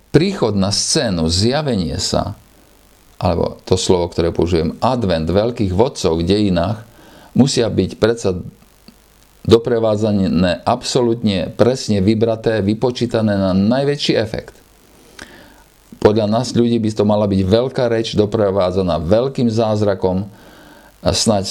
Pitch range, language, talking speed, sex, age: 95-120 Hz, Slovak, 110 wpm, male, 50-69